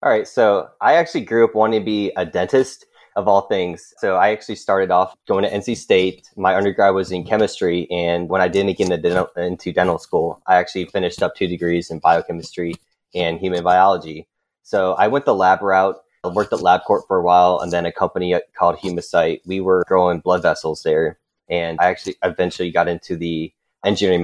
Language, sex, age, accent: English, male, 20-39, American